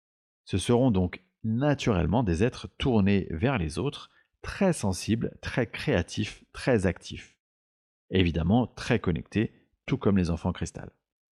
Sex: male